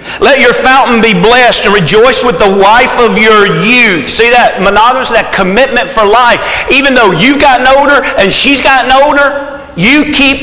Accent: American